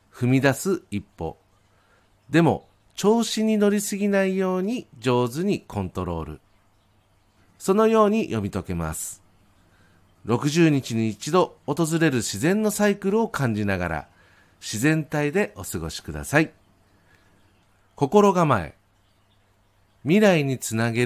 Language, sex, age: Japanese, male, 50-69